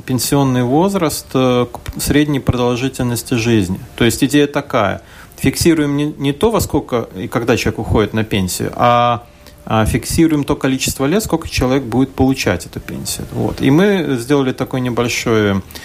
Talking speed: 145 wpm